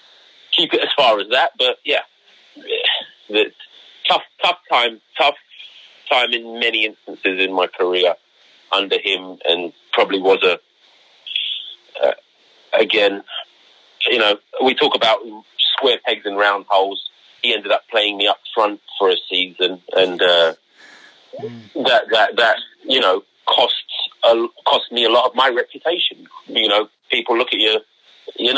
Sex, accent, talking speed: male, British, 150 wpm